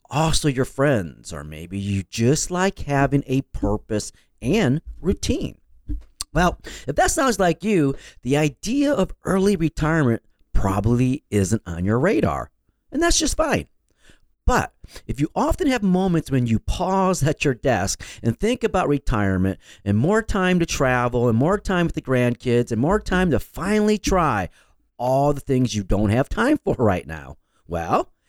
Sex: male